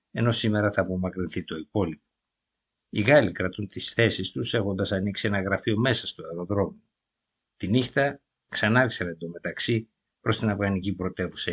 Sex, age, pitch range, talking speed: male, 50-69, 95-115 Hz, 145 wpm